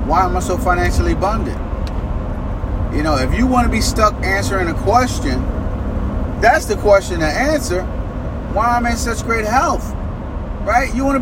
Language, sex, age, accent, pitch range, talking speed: English, male, 30-49, American, 80-130 Hz, 175 wpm